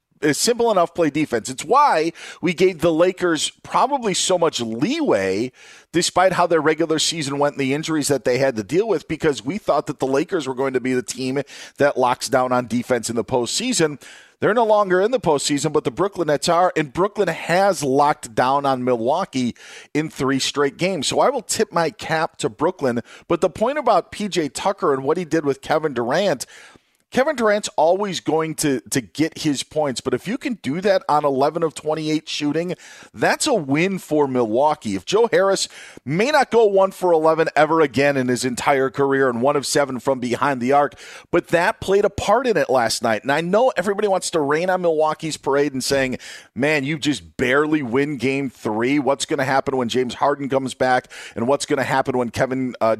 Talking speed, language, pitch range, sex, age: 210 wpm, English, 135-170 Hz, male, 40-59